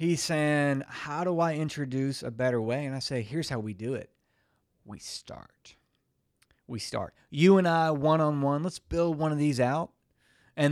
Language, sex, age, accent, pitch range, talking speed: English, male, 40-59, American, 120-155 Hz, 190 wpm